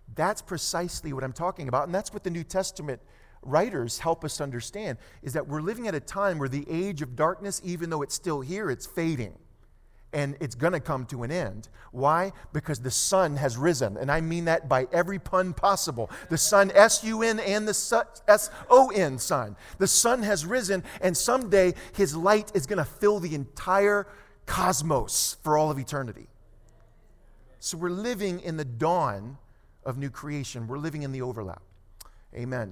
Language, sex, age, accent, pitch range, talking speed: English, male, 40-59, American, 135-195 Hz, 180 wpm